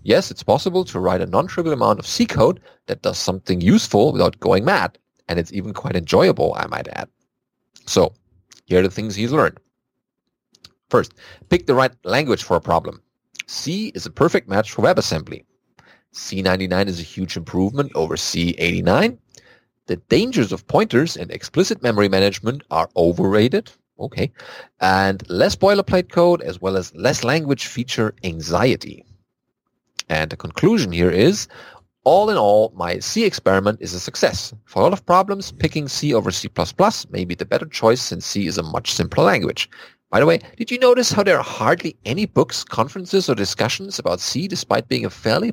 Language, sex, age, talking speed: English, male, 30-49, 175 wpm